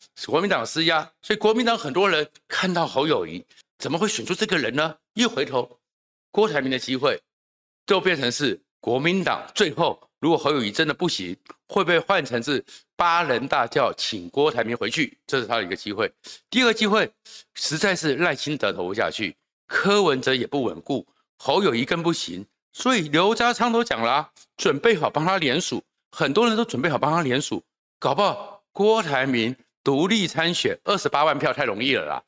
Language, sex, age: Chinese, male, 50-69